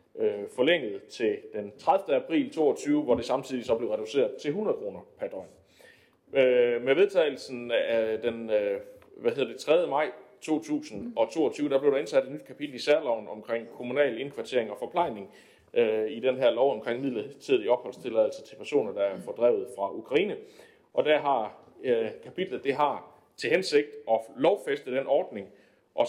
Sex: male